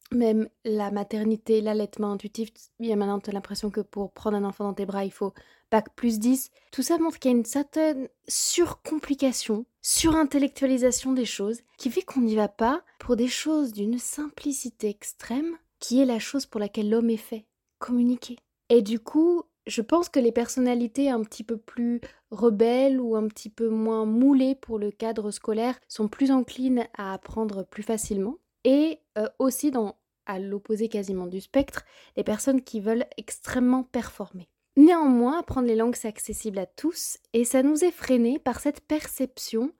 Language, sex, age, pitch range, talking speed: French, female, 20-39, 210-265 Hz, 180 wpm